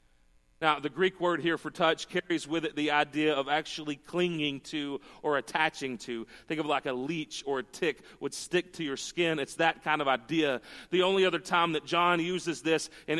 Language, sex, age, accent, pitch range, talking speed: English, male, 40-59, American, 160-190 Hz, 215 wpm